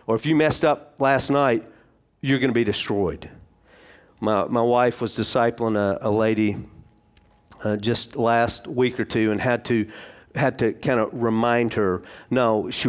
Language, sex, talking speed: English, male, 170 wpm